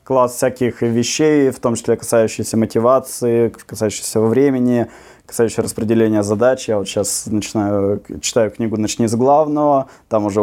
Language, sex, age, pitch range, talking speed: Russian, male, 20-39, 110-145 Hz, 140 wpm